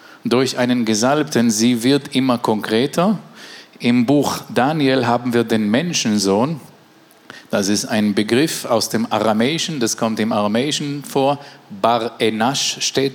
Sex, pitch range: male, 115-140 Hz